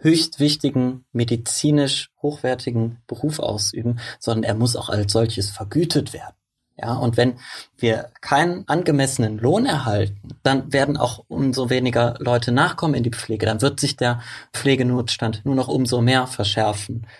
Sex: male